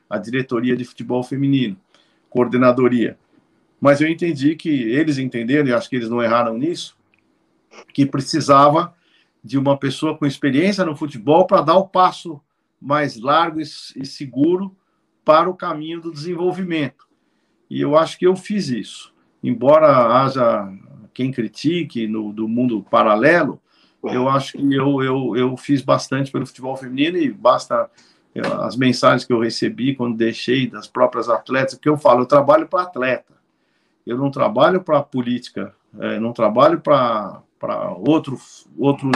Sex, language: male, Portuguese